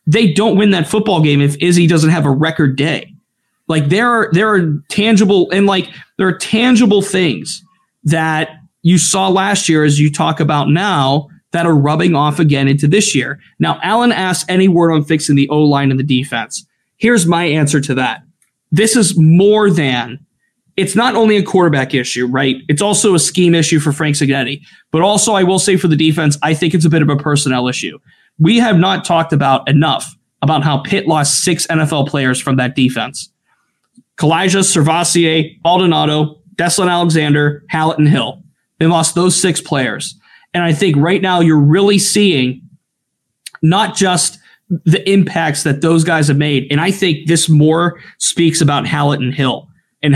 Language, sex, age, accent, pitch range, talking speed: English, male, 30-49, American, 145-185 Hz, 185 wpm